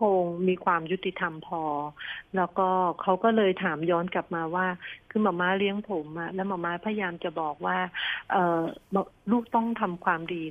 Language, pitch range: Thai, 170-205 Hz